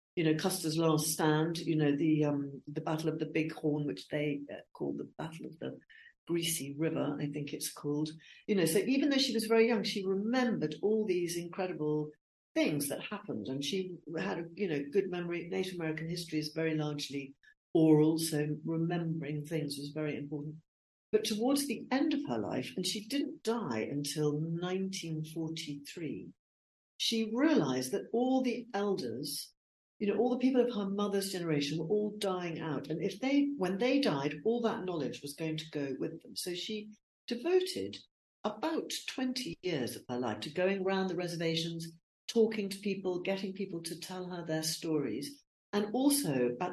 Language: English